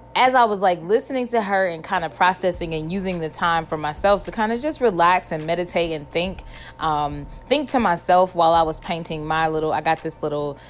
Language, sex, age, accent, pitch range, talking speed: English, female, 20-39, American, 165-210 Hz, 225 wpm